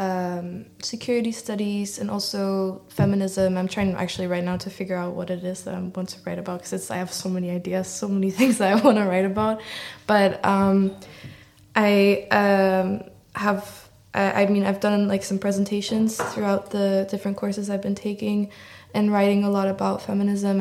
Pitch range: 185-200 Hz